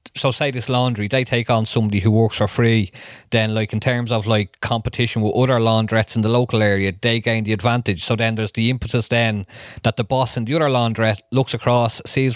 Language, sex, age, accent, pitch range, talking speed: English, male, 20-39, Irish, 110-130 Hz, 225 wpm